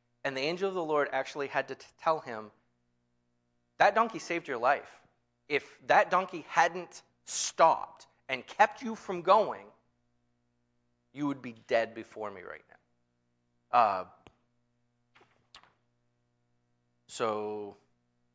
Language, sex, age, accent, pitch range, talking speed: English, male, 30-49, American, 85-145 Hz, 120 wpm